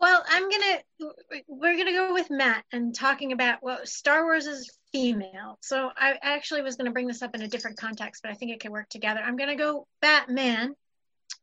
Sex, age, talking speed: female, 30-49, 225 wpm